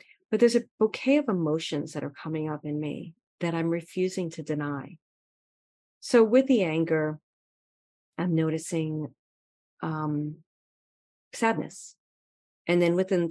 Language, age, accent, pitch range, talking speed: English, 40-59, American, 150-180 Hz, 125 wpm